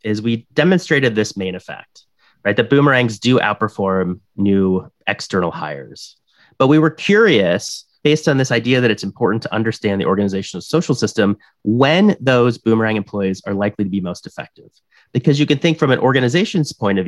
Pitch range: 100-125 Hz